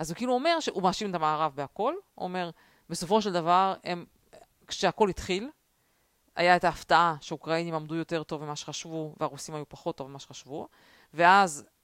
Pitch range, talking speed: 160-220 Hz, 165 wpm